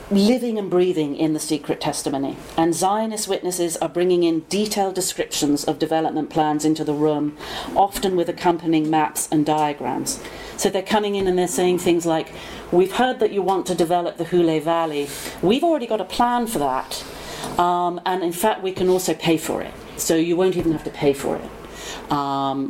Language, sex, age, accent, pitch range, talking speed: English, female, 40-59, British, 155-190 Hz, 195 wpm